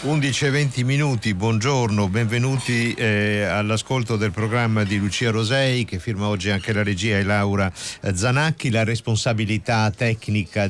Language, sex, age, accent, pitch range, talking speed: Italian, male, 50-69, native, 95-125 Hz, 140 wpm